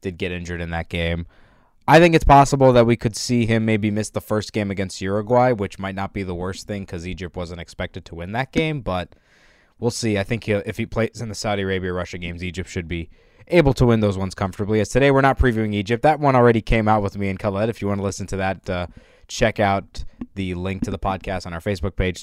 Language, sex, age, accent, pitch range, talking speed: English, male, 20-39, American, 95-120 Hz, 250 wpm